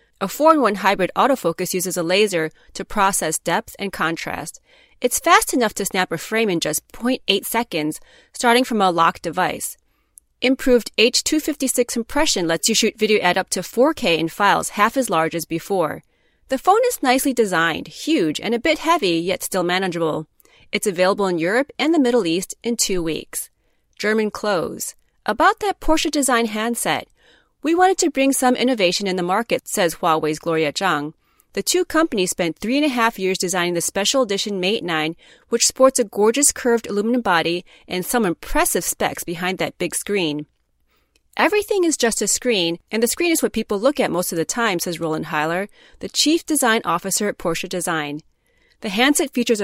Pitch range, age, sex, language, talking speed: 175-255 Hz, 30-49, female, English, 185 wpm